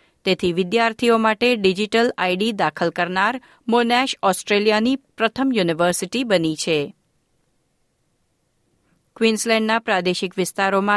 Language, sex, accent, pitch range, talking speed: Gujarati, female, native, 180-230 Hz, 75 wpm